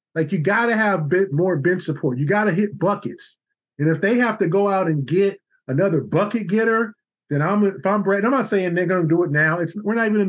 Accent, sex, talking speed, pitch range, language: American, male, 240 wpm, 165-205 Hz, English